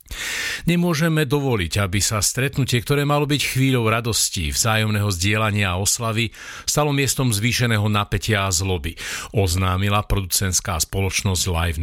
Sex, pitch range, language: male, 100-125 Hz, Slovak